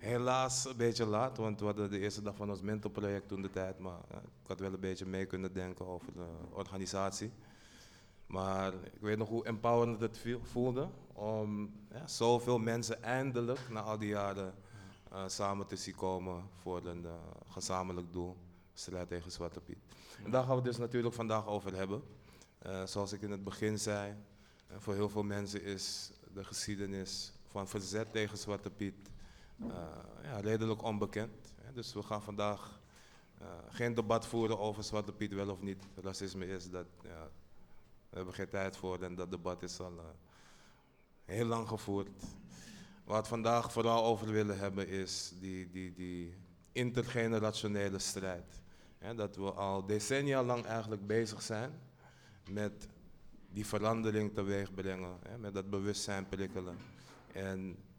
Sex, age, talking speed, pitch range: male, 20-39, 165 wpm, 95-110 Hz